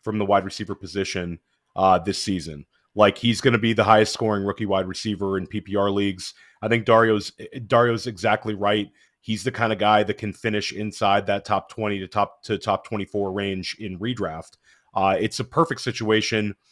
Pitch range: 100-115 Hz